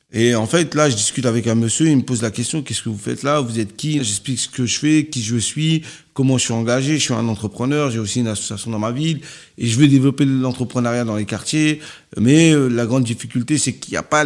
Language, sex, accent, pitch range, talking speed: French, male, French, 115-145 Hz, 270 wpm